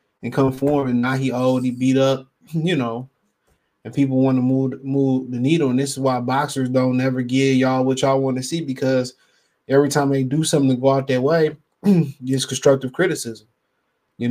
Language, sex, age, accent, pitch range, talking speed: English, male, 20-39, American, 125-140 Hz, 200 wpm